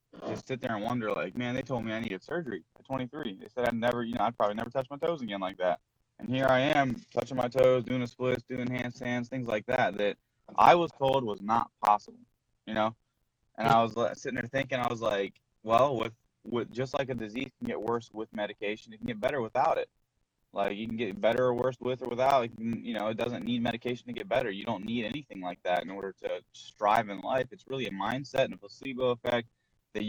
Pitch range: 110-125 Hz